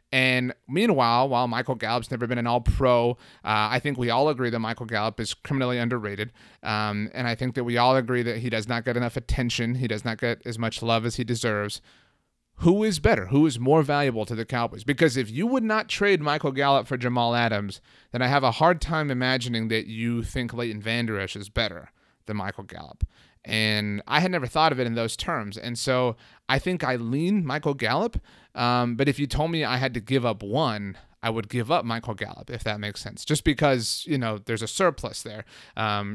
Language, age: English, 30-49